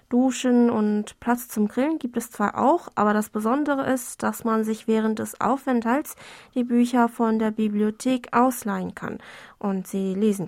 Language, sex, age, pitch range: German, female, 20-39, 205-245 Hz